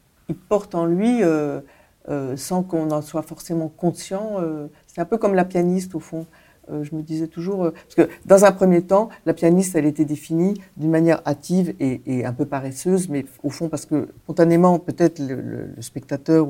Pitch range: 145-175 Hz